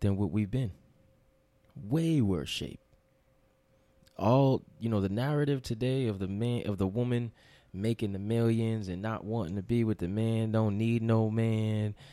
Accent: American